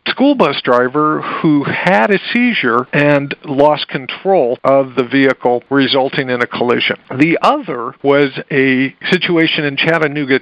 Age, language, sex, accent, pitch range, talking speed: 50-69, English, male, American, 135-180 Hz, 140 wpm